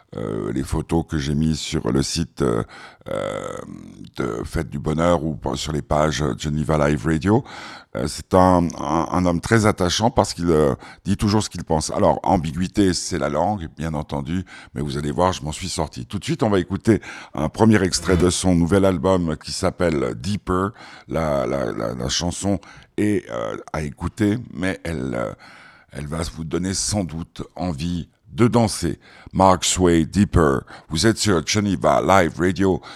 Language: French